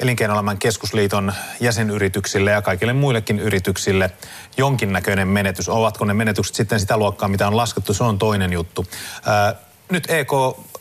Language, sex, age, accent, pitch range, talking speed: Finnish, male, 30-49, native, 100-120 Hz, 140 wpm